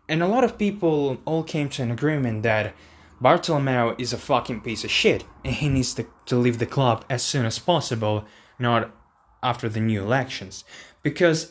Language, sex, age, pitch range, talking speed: English, male, 20-39, 115-155 Hz, 190 wpm